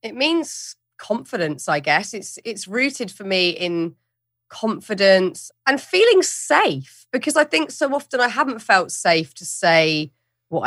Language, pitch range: English, 160-200 Hz